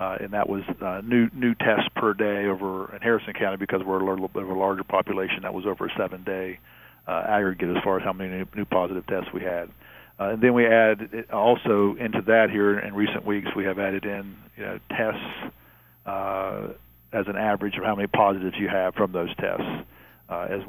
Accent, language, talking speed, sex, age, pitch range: American, English, 215 wpm, male, 50-69, 95-110 Hz